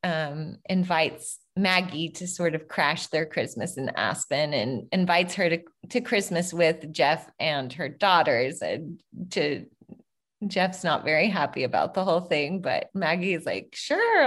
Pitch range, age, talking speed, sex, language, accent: 170-210 Hz, 20-39, 155 wpm, female, English, American